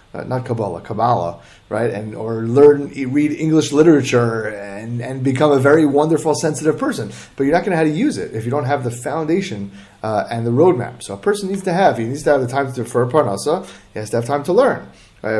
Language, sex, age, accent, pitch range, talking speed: English, male, 30-49, American, 115-155 Hz, 240 wpm